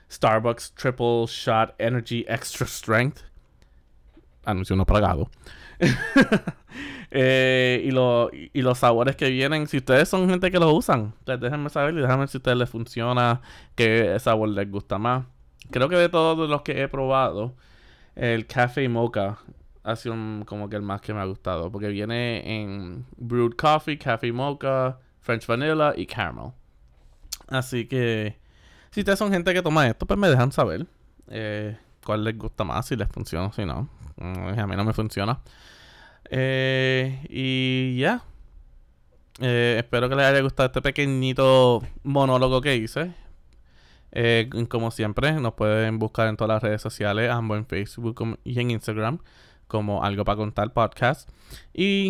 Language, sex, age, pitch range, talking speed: Spanish, male, 20-39, 105-130 Hz, 160 wpm